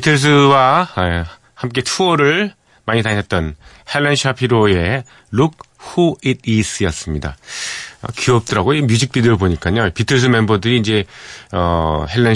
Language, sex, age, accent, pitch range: Korean, male, 30-49, native, 85-125 Hz